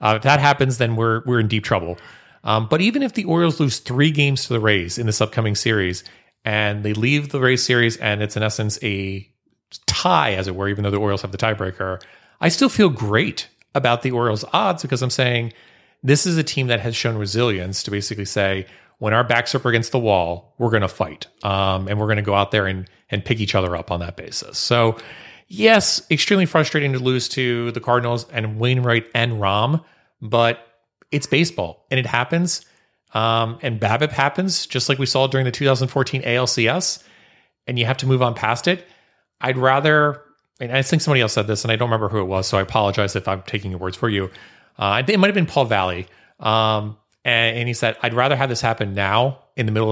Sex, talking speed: male, 220 wpm